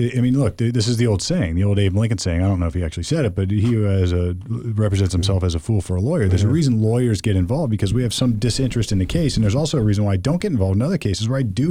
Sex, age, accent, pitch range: male, 40-59, American, 95-120 Hz